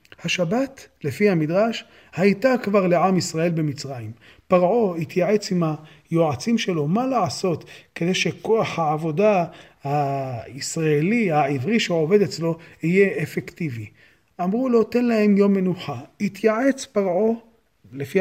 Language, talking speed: Hebrew, 110 wpm